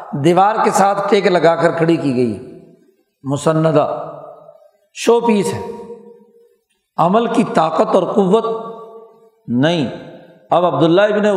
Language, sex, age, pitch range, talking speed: Urdu, male, 50-69, 165-210 Hz, 115 wpm